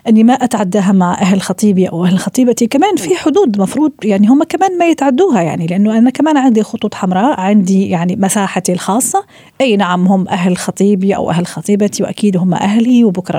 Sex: female